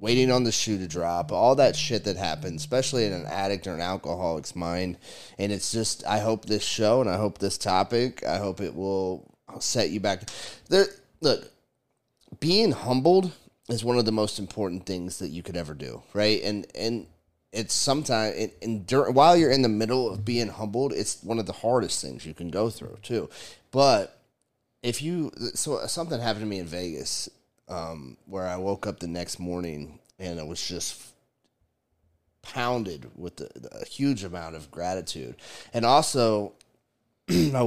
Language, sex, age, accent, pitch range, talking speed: English, male, 30-49, American, 85-115 Hz, 185 wpm